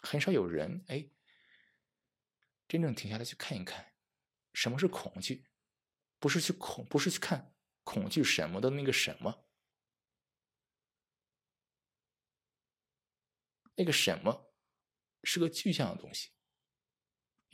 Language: Chinese